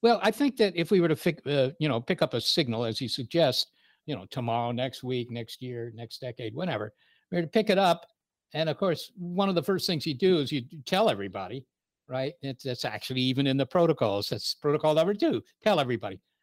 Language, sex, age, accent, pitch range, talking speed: English, male, 60-79, American, 135-180 Hz, 230 wpm